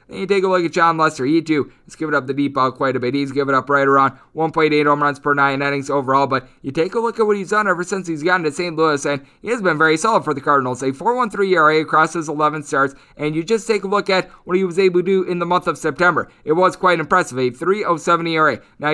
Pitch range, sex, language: 135-160 Hz, male, English